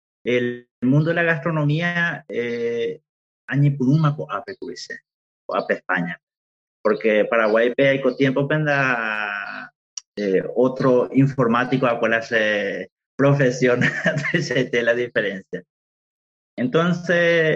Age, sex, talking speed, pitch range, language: 30-49, male, 95 wpm, 110-140 Hz, Spanish